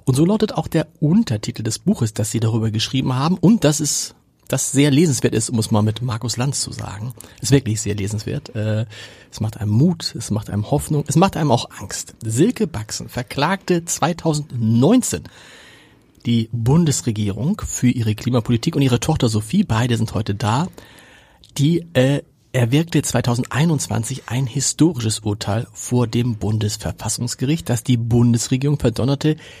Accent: German